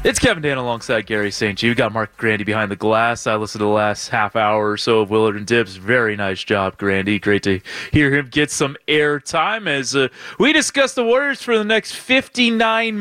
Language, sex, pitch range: English, male, 115-165 Hz